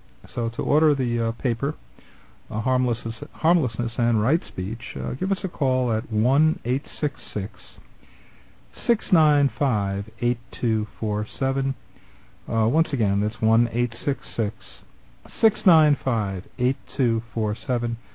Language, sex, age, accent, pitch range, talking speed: English, male, 50-69, American, 110-140 Hz, 105 wpm